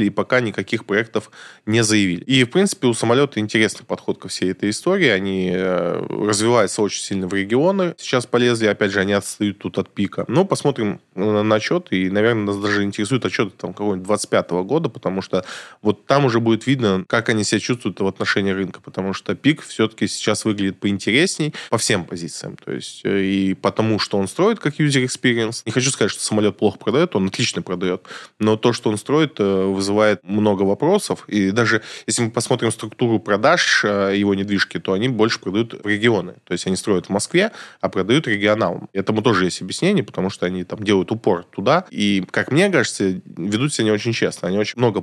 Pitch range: 95-115 Hz